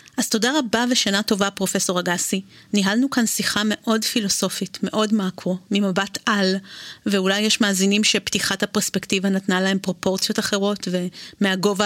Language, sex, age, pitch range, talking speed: Hebrew, female, 30-49, 190-240 Hz, 130 wpm